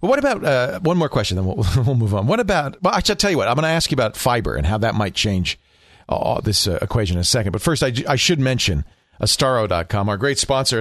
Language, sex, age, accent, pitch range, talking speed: English, male, 40-59, American, 105-145 Hz, 260 wpm